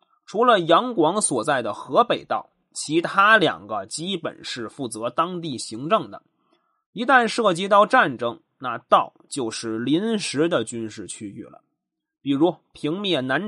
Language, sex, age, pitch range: Chinese, male, 20-39, 150-235 Hz